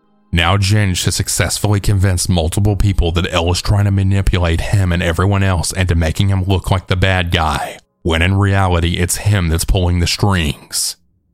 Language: English